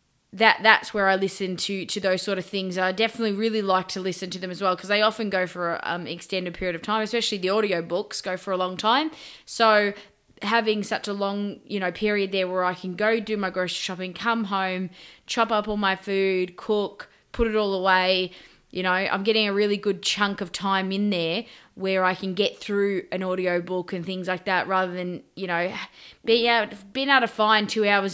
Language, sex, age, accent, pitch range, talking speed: English, female, 20-39, Australian, 185-215 Hz, 225 wpm